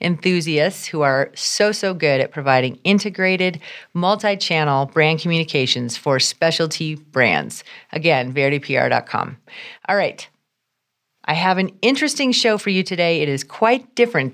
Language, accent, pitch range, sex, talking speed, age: English, American, 145-200 Hz, female, 130 wpm, 40-59